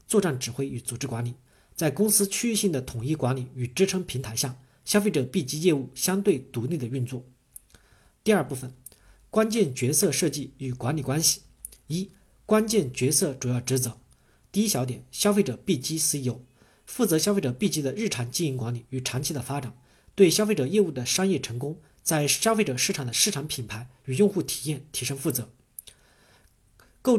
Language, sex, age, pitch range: Chinese, male, 50-69, 125-185 Hz